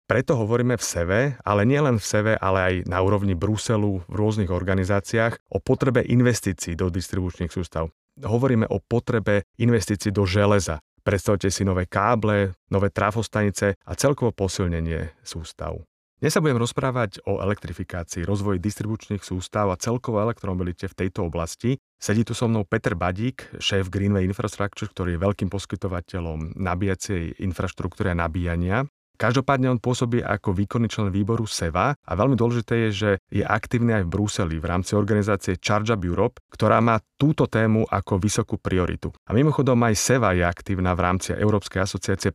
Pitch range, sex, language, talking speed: 95-115 Hz, male, Slovak, 155 wpm